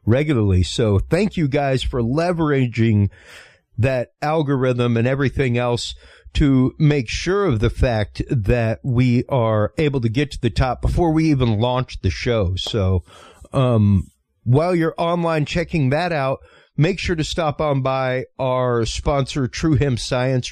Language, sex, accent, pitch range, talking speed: English, male, American, 110-145 Hz, 150 wpm